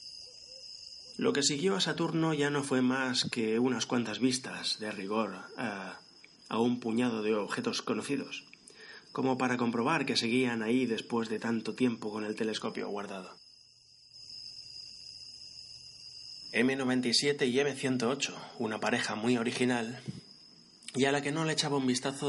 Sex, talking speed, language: male, 140 wpm, Spanish